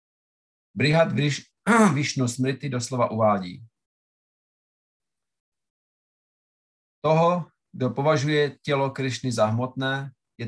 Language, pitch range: Czech, 115-145 Hz